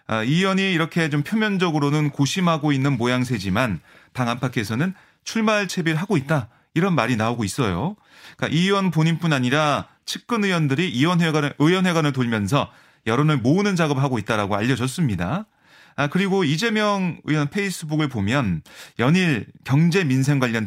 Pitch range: 125-180 Hz